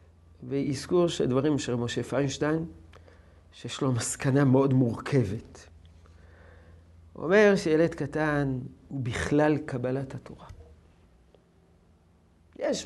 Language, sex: Hebrew, male